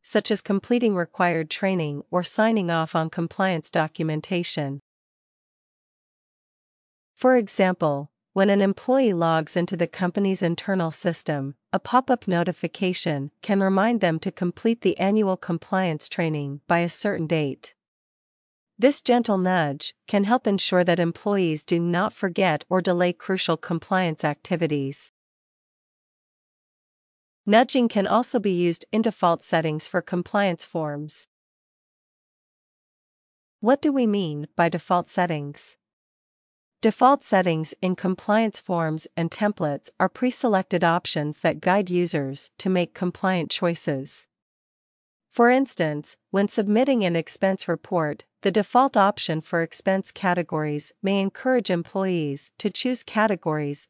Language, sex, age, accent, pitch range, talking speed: English, female, 40-59, American, 160-200 Hz, 120 wpm